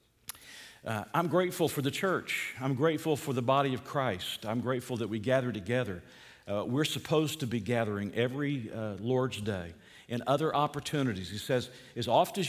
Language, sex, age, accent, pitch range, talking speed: English, male, 50-69, American, 120-160 Hz, 180 wpm